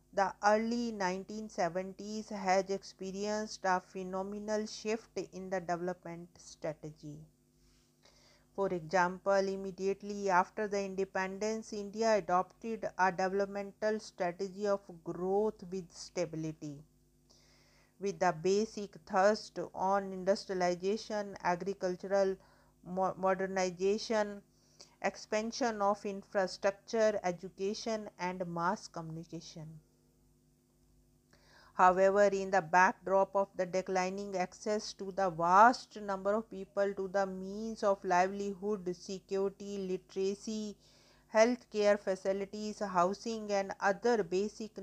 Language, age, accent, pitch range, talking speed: English, 50-69, Indian, 180-205 Hz, 95 wpm